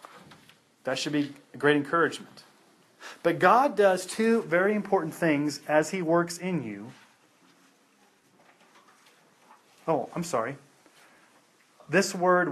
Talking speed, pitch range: 110 wpm, 145-210 Hz